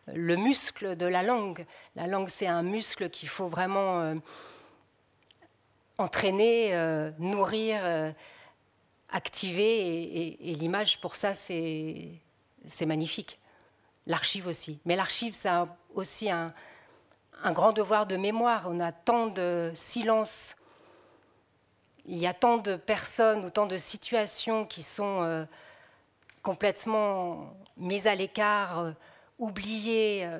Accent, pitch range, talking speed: French, 170-210 Hz, 125 wpm